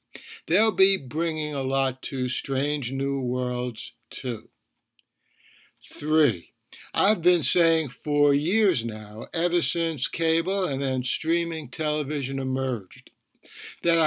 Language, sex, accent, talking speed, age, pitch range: English, male, American, 110 wpm, 60-79, 135-175 Hz